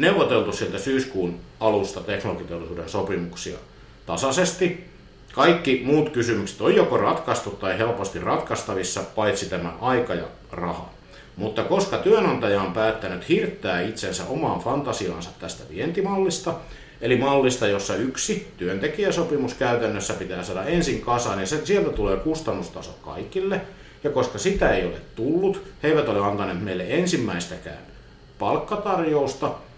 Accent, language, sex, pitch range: native, Finnish, male, 95-145 Hz